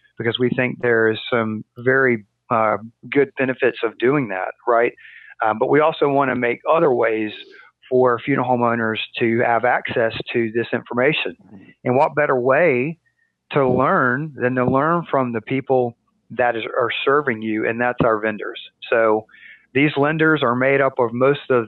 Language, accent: English, American